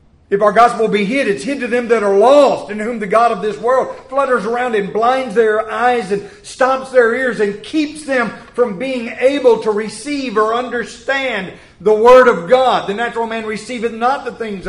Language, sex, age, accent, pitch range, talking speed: English, male, 40-59, American, 195-255 Hz, 205 wpm